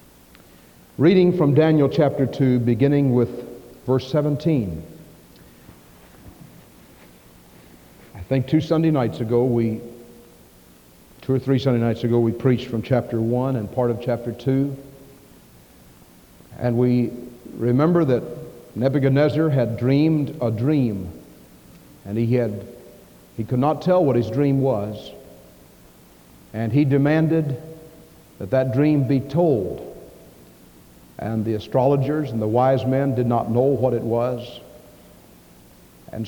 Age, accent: 60-79, American